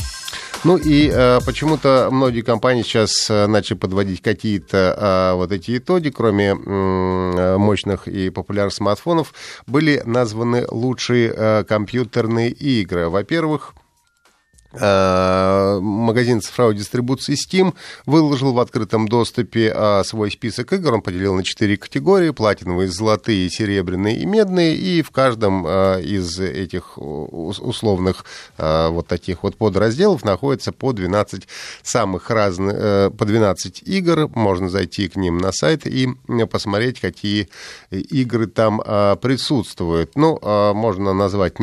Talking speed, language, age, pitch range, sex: 110 wpm, Russian, 30-49, 95-125 Hz, male